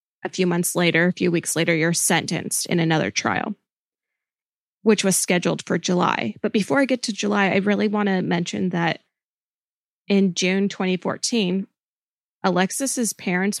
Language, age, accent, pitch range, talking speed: English, 20-39, American, 170-195 Hz, 155 wpm